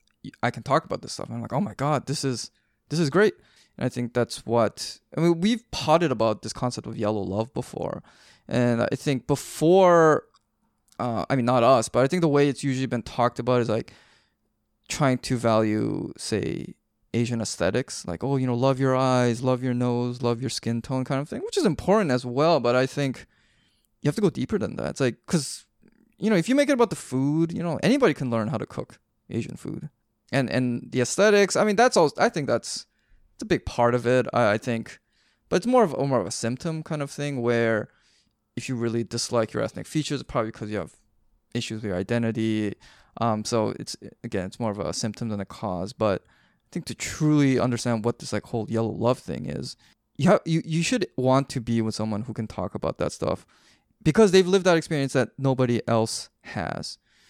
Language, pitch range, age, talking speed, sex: English, 115-150 Hz, 20-39, 225 wpm, male